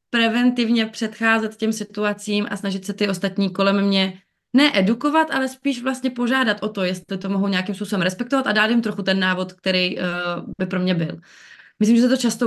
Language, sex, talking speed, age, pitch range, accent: Czech, female, 190 wpm, 20-39, 185-215 Hz, native